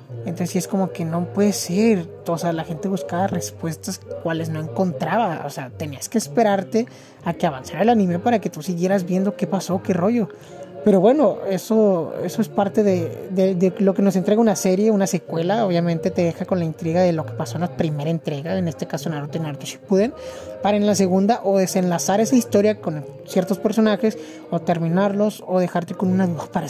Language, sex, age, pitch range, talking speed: Spanish, male, 30-49, 165-200 Hz, 205 wpm